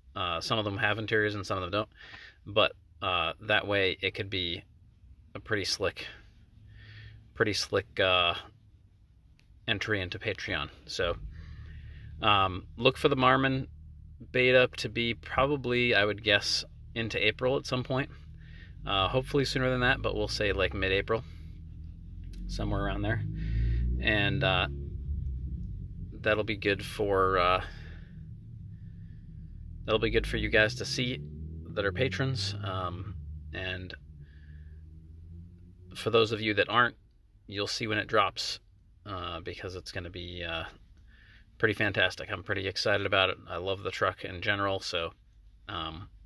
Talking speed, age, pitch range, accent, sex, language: 145 wpm, 30-49, 85-110 Hz, American, male, English